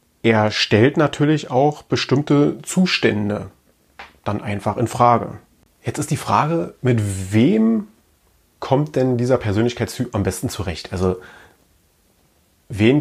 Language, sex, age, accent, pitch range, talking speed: German, male, 30-49, German, 105-125 Hz, 115 wpm